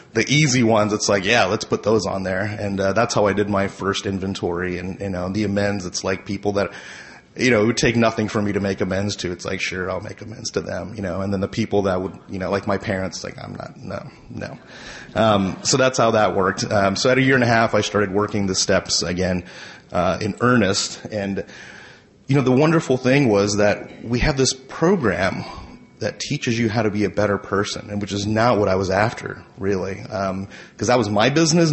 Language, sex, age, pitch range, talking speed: English, male, 30-49, 100-125 Hz, 240 wpm